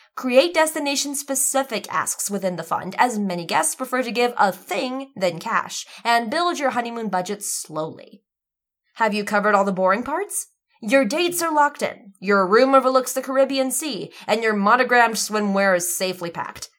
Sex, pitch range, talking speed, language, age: female, 190-275 Hz, 170 wpm, English, 20-39